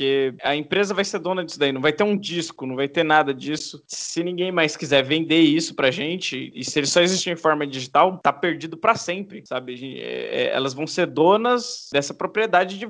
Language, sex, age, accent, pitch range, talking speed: Portuguese, male, 20-39, Brazilian, 150-190 Hz, 215 wpm